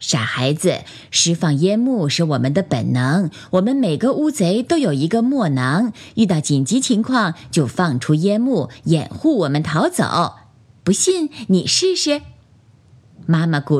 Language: Chinese